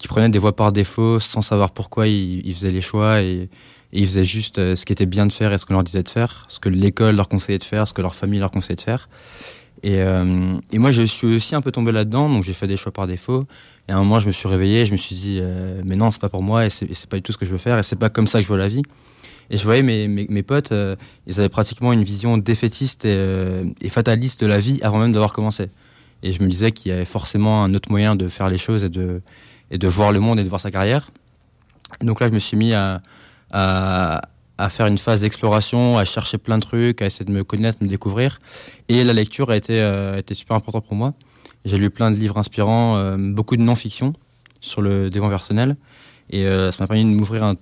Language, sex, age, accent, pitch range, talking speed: French, male, 20-39, French, 100-115 Hz, 275 wpm